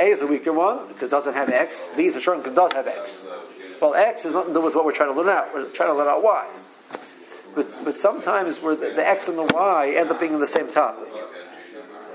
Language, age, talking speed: English, 60-79, 270 wpm